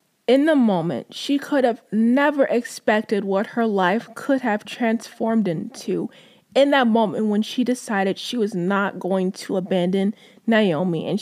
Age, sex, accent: 20-39, female, American